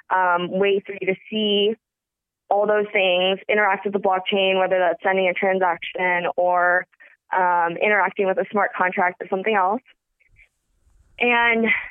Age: 20-39